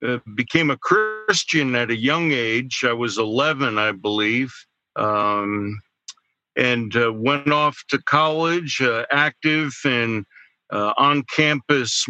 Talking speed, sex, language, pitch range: 125 wpm, male, English, 115-150 Hz